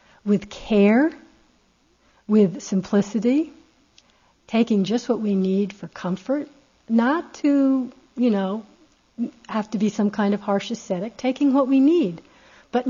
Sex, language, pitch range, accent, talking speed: female, English, 190-250 Hz, American, 130 wpm